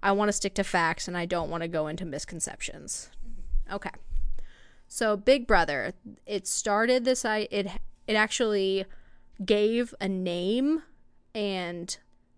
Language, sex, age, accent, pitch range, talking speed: English, female, 20-39, American, 185-220 Hz, 135 wpm